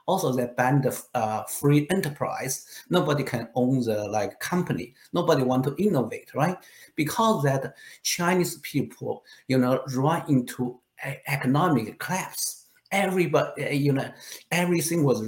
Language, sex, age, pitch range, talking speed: English, male, 50-69, 125-180 Hz, 130 wpm